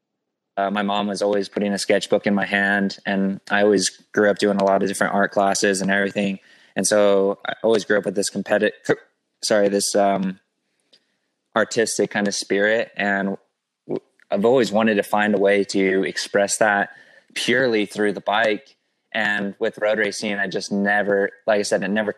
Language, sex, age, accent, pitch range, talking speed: English, male, 20-39, American, 95-105 Hz, 185 wpm